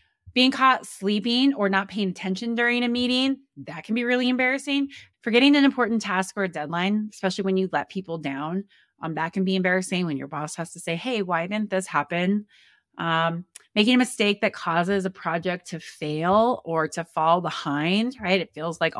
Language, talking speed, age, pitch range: English, 195 wpm, 20-39, 165-210 Hz